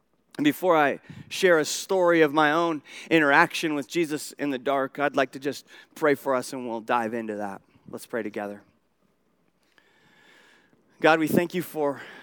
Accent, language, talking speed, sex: American, English, 170 wpm, male